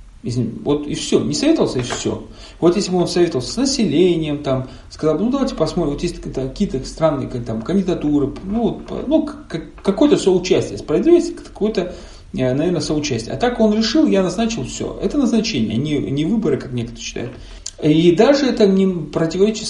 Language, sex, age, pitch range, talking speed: Russian, male, 40-59, 135-220 Hz, 180 wpm